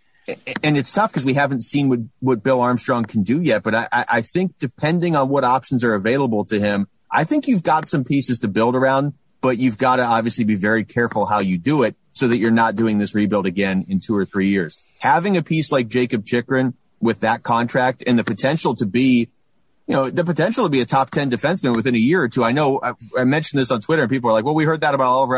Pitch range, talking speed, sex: 115-150 Hz, 255 wpm, male